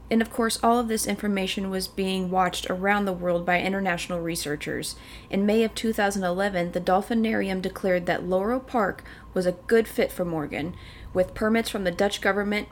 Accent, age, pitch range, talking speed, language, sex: American, 30-49, 180-220 Hz, 180 wpm, English, female